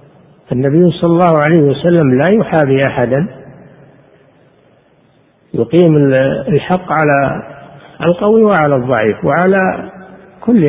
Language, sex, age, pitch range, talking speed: Arabic, male, 50-69, 135-170 Hz, 90 wpm